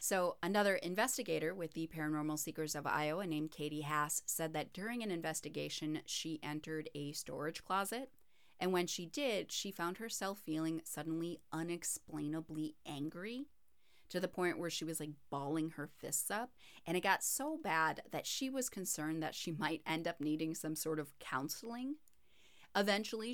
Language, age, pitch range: English, 30-49, 155-185 Hz